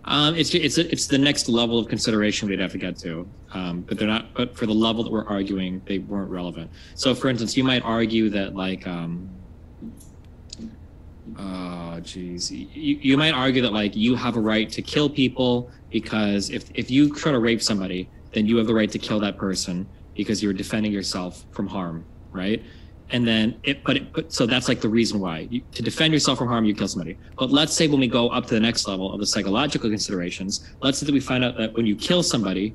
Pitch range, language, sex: 95-115 Hz, English, male